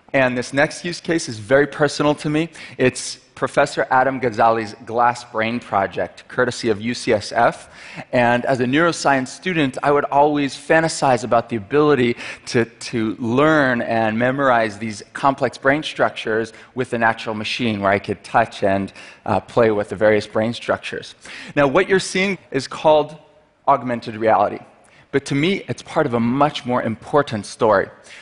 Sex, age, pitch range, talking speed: male, 30-49, 115-140 Hz, 160 wpm